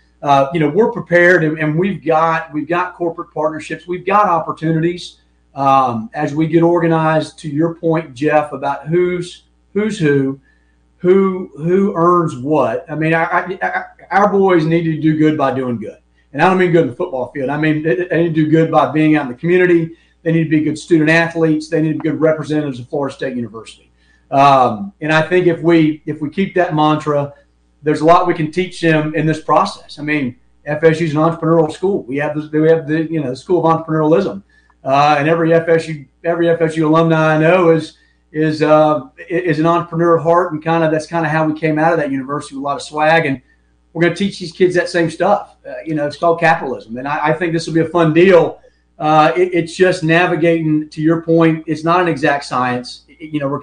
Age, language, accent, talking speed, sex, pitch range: 40-59, English, American, 225 wpm, male, 150-170 Hz